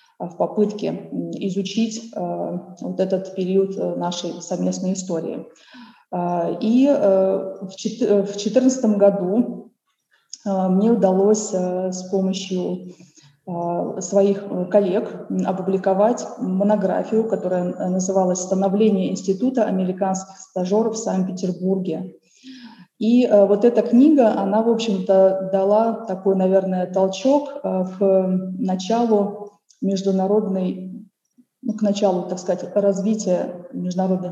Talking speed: 85 wpm